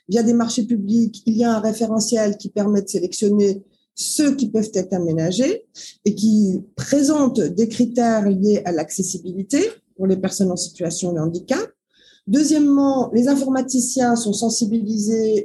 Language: French